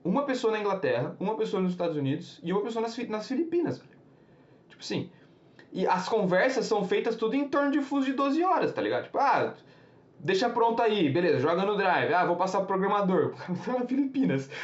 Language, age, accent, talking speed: Portuguese, 20-39, Brazilian, 195 wpm